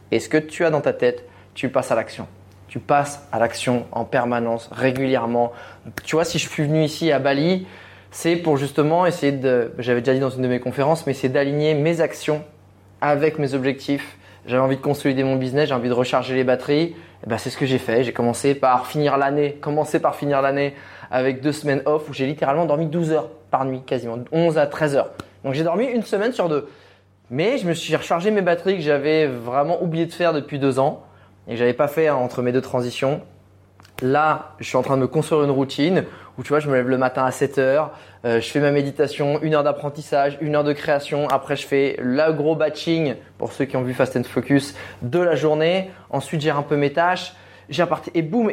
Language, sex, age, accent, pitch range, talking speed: French, male, 20-39, French, 125-155 Hz, 230 wpm